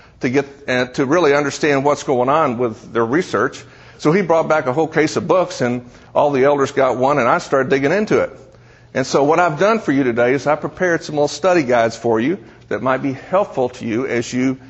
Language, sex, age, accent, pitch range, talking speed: English, male, 50-69, American, 130-160 Hz, 235 wpm